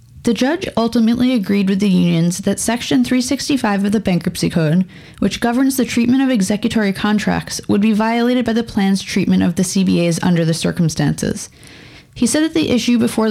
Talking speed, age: 180 wpm, 20-39